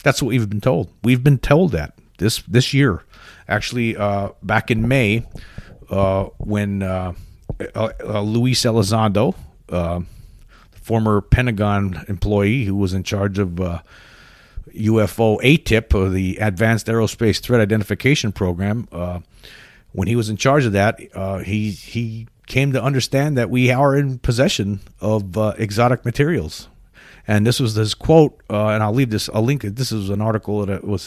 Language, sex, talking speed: English, male, 160 wpm